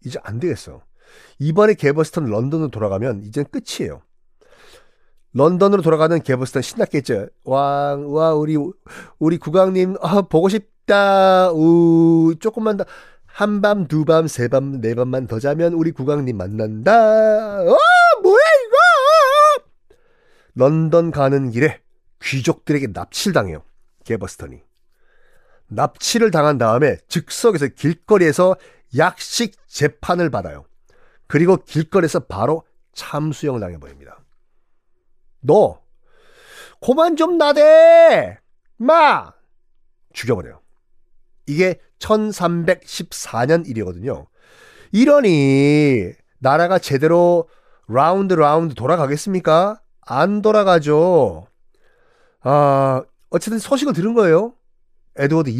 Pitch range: 140-215 Hz